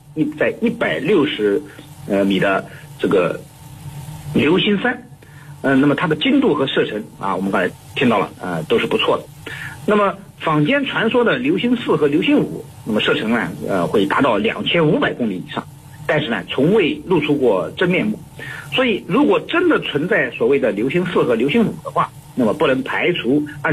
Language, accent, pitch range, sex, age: Chinese, native, 145-210 Hz, male, 50-69